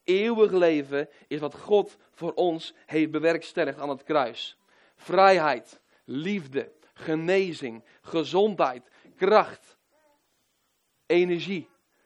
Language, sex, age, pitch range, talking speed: Dutch, male, 40-59, 145-180 Hz, 90 wpm